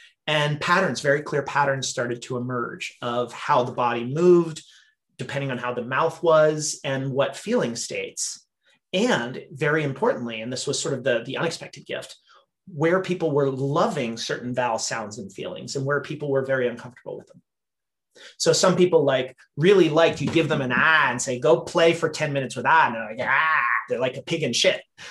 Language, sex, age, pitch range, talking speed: English, male, 30-49, 130-170 Hz, 195 wpm